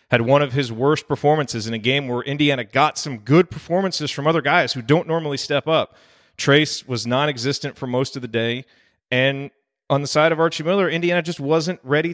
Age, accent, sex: 30-49, American, male